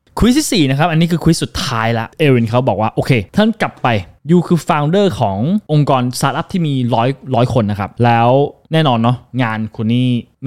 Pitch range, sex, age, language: 115-145 Hz, male, 20-39, Thai